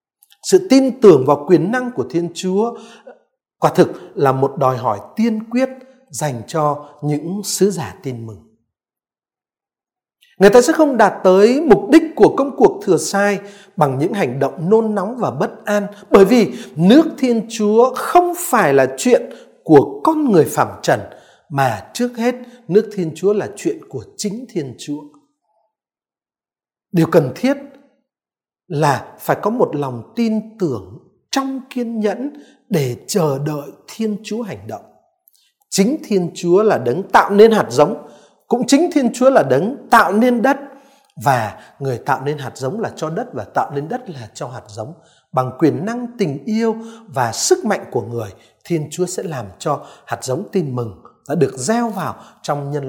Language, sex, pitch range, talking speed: Vietnamese, male, 145-245 Hz, 170 wpm